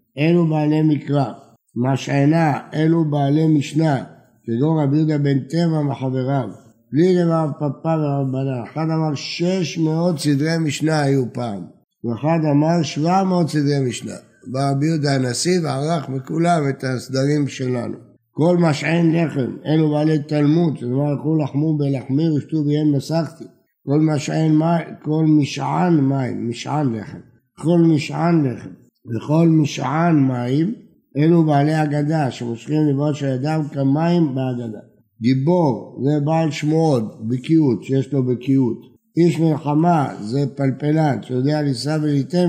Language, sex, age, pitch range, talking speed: Hebrew, male, 60-79, 130-155 Hz, 120 wpm